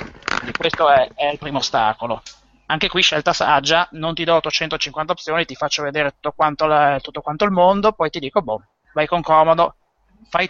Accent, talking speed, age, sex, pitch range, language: native, 195 wpm, 30-49, male, 125-165 Hz, Italian